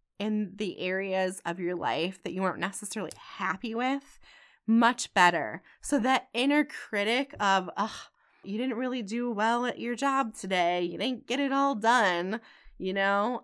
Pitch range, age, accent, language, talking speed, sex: 190-245 Hz, 20-39, American, English, 165 wpm, female